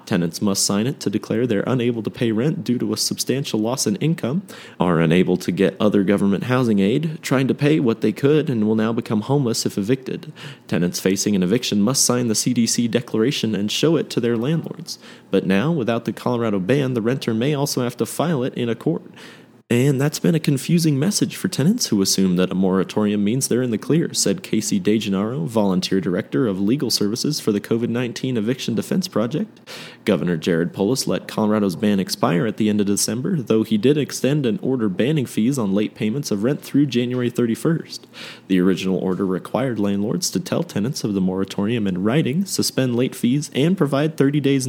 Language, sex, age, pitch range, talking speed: English, male, 30-49, 100-135 Hz, 205 wpm